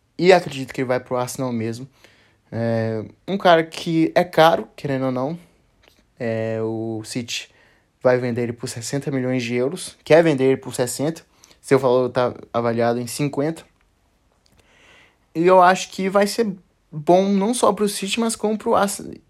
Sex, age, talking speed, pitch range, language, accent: male, 20-39, 175 wpm, 120-160 Hz, Portuguese, Brazilian